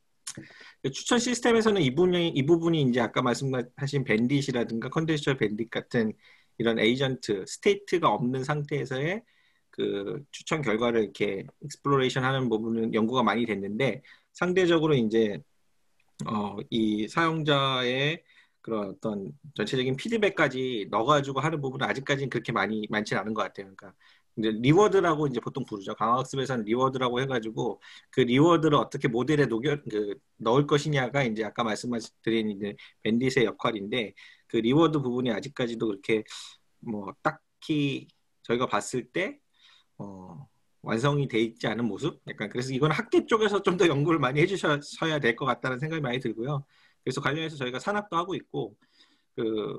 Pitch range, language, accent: 115-150 Hz, Korean, native